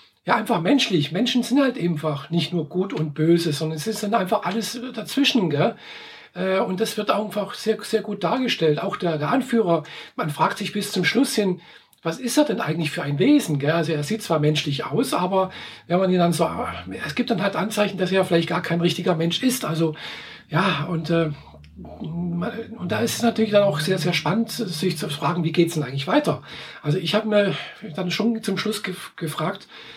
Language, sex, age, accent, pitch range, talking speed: German, male, 50-69, German, 160-215 Hz, 220 wpm